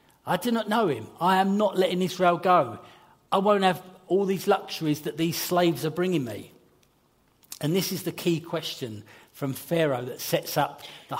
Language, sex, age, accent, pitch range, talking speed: English, male, 40-59, British, 145-180 Hz, 190 wpm